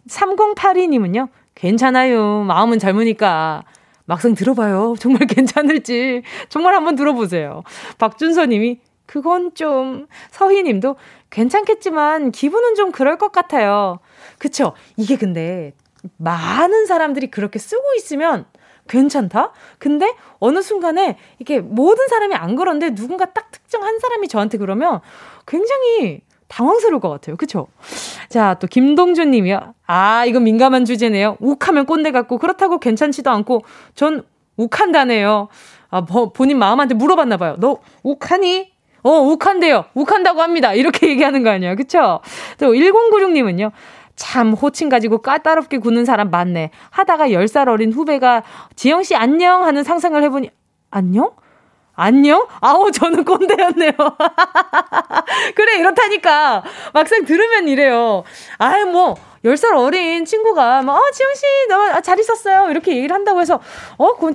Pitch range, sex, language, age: 230-360 Hz, female, Korean, 20-39